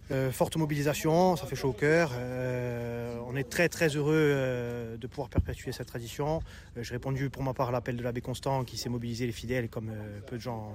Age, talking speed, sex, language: 30-49, 205 wpm, male, French